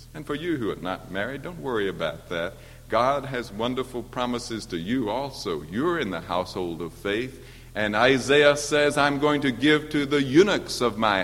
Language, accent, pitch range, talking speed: English, American, 115-145 Hz, 190 wpm